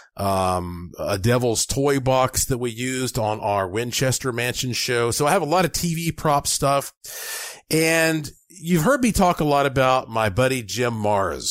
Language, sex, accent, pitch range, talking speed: English, male, American, 110-140 Hz, 175 wpm